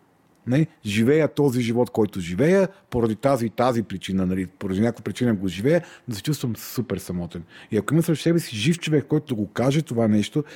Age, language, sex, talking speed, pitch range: 40-59, Bulgarian, male, 200 wpm, 120-155 Hz